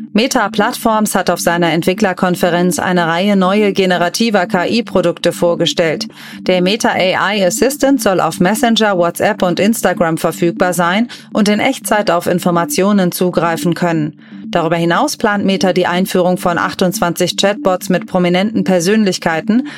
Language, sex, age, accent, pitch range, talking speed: German, female, 30-49, German, 175-215 Hz, 130 wpm